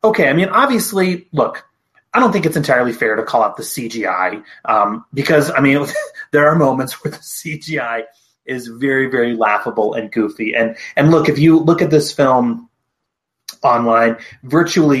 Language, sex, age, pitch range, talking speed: English, male, 30-49, 115-175 Hz, 170 wpm